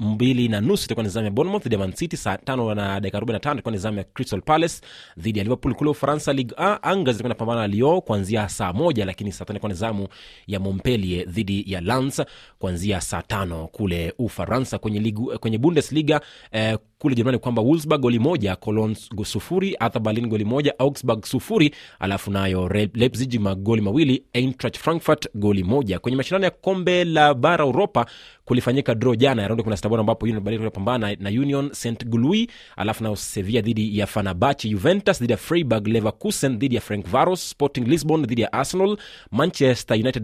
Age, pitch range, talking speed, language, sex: 30-49, 105-135 Hz, 160 wpm, Swahili, male